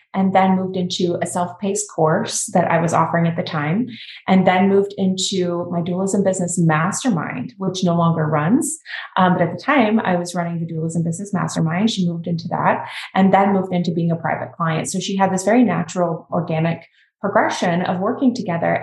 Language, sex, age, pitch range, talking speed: English, female, 20-39, 170-200 Hz, 195 wpm